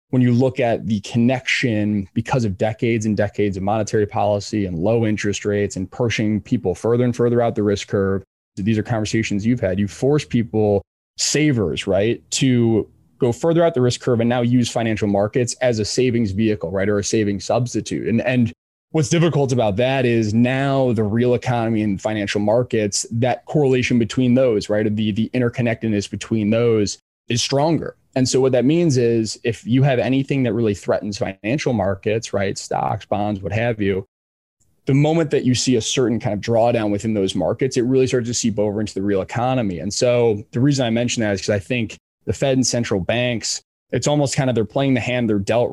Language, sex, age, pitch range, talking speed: English, male, 20-39, 105-125 Hz, 205 wpm